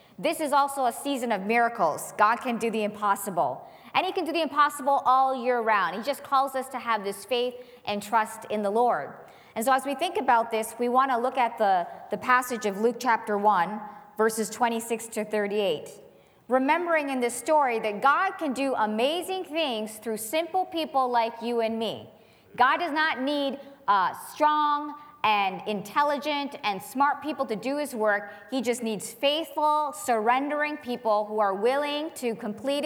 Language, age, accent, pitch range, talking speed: English, 40-59, American, 210-275 Hz, 185 wpm